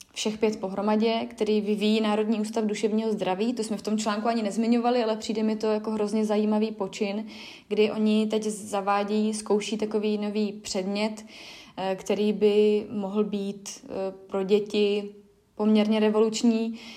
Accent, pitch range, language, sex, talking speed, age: native, 205-225 Hz, Czech, female, 140 wpm, 20-39